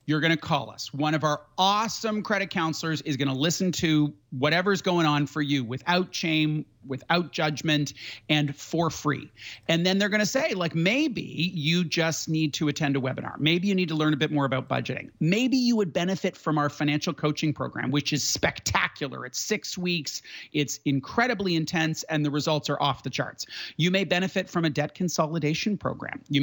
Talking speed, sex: 200 wpm, male